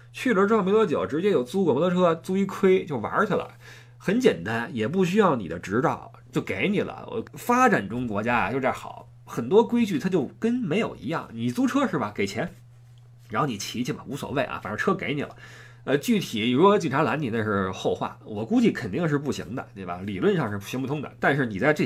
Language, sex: Chinese, male